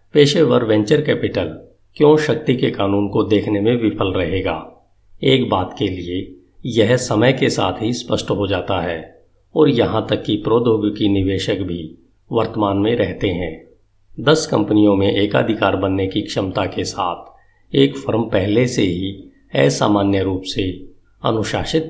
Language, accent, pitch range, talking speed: Hindi, native, 95-120 Hz, 150 wpm